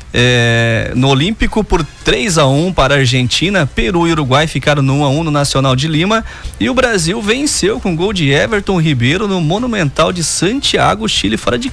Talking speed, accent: 200 wpm, Brazilian